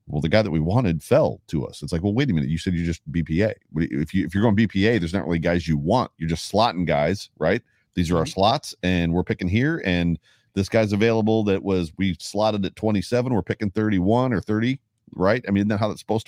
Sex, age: male, 40-59